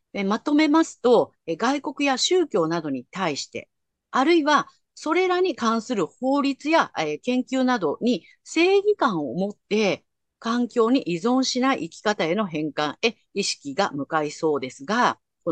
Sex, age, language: female, 50-69, Japanese